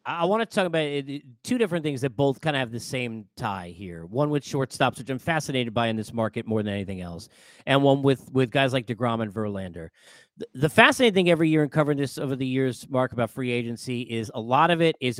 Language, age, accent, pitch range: English, 40-59, American, 125-165 Hz